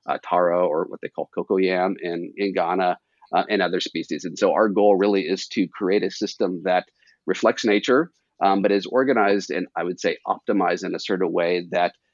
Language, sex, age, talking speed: English, male, 40-59, 215 wpm